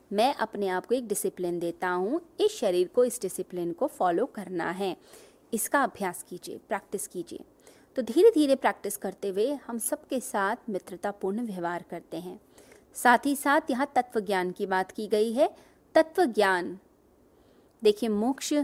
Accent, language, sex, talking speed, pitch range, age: native, Hindi, female, 150 wpm, 195-265 Hz, 30-49